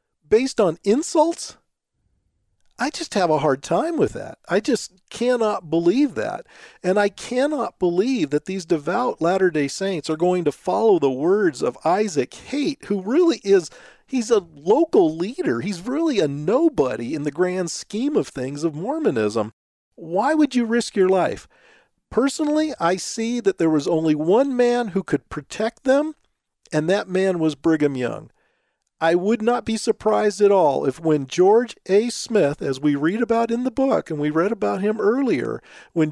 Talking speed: 175 wpm